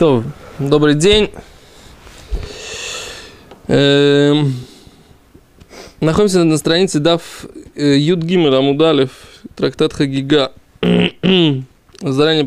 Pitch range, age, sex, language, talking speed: 140-190 Hz, 20-39, male, Russian, 65 wpm